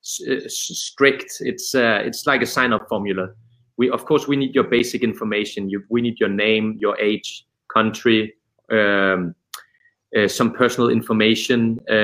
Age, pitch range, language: 30-49, 100-125 Hz, Czech